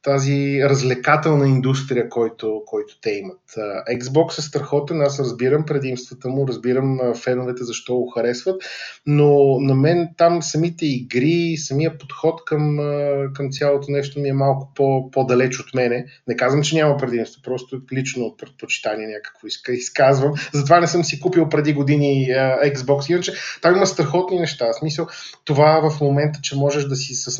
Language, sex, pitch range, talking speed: Bulgarian, male, 125-145 Hz, 155 wpm